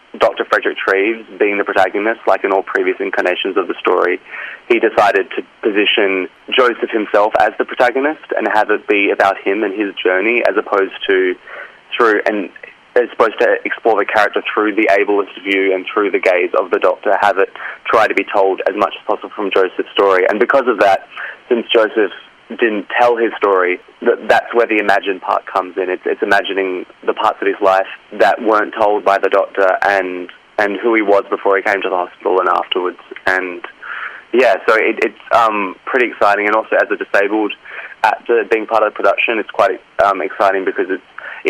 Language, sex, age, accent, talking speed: English, male, 20-39, Australian, 200 wpm